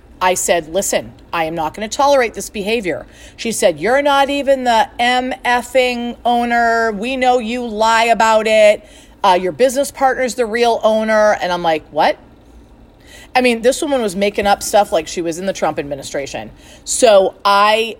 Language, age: English, 40-59